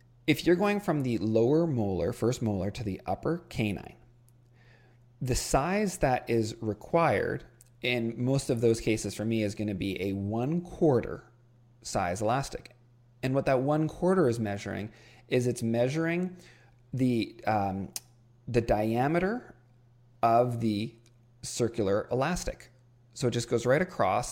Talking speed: 145 wpm